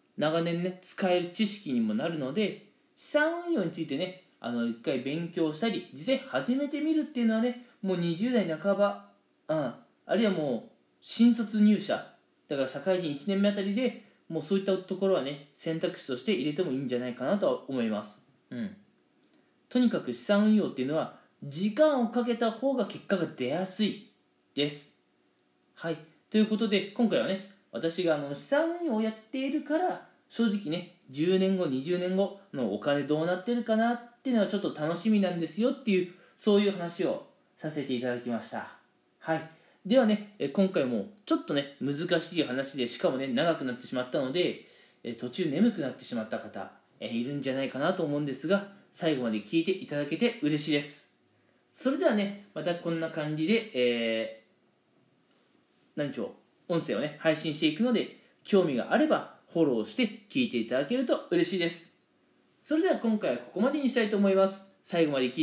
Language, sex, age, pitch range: Japanese, male, 20-39, 145-220 Hz